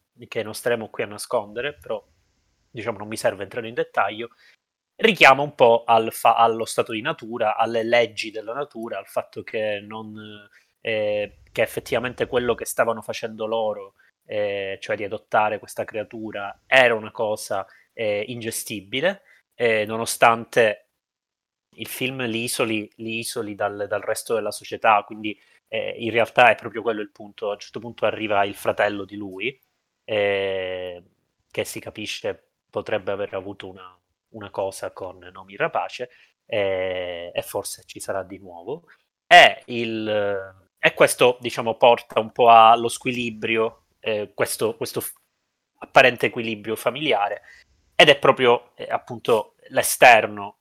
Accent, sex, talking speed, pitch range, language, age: native, male, 140 wpm, 100-120 Hz, Italian, 20-39